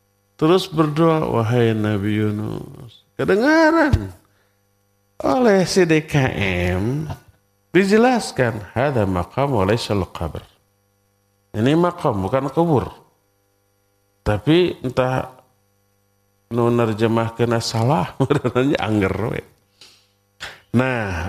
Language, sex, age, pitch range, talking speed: Indonesian, male, 50-69, 100-155 Hz, 70 wpm